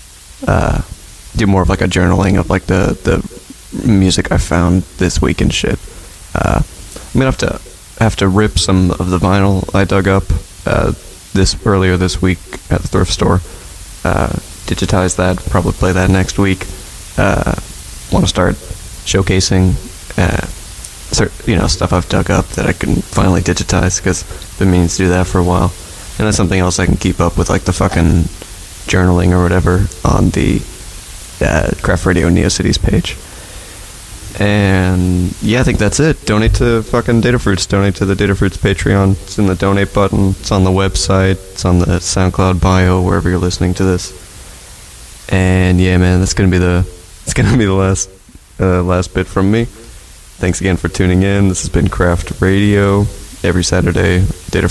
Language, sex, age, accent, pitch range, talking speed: English, male, 20-39, American, 90-95 Hz, 180 wpm